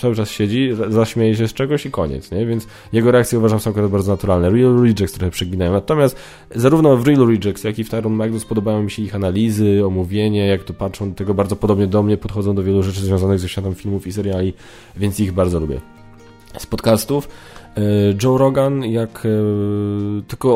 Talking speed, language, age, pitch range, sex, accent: 190 wpm, Polish, 20-39, 95-110 Hz, male, native